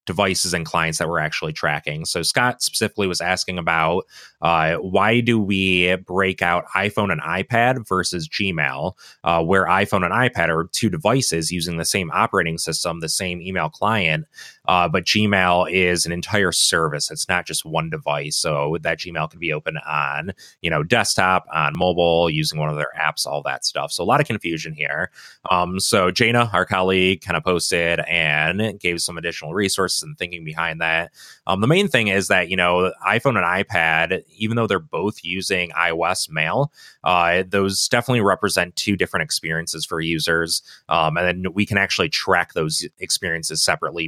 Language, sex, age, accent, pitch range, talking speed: English, male, 30-49, American, 80-95 Hz, 180 wpm